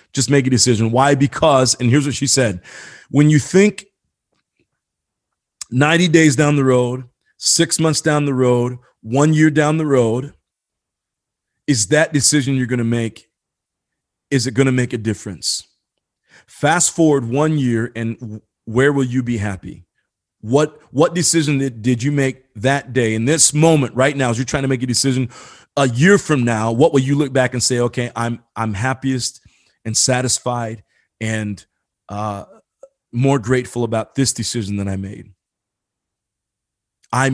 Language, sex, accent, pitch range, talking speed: English, male, American, 115-145 Hz, 160 wpm